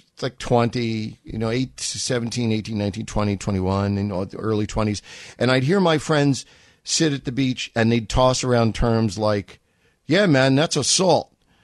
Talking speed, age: 175 wpm, 50-69